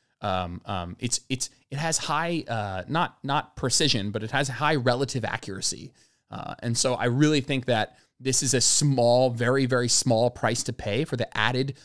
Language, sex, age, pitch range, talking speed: English, male, 20-39, 115-155 Hz, 185 wpm